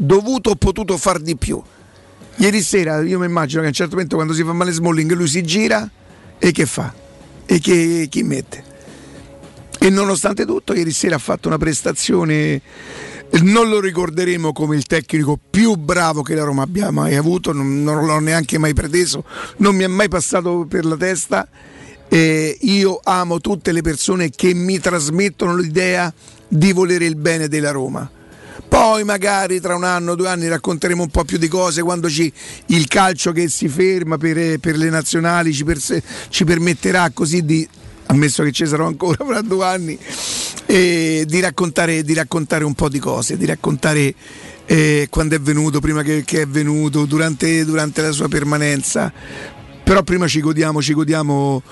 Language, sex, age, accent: Italian, male, 50-69, native